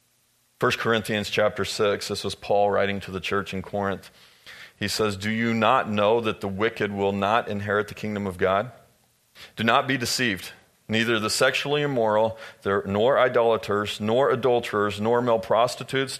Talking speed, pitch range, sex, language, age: 165 wpm, 95-115 Hz, male, English, 40-59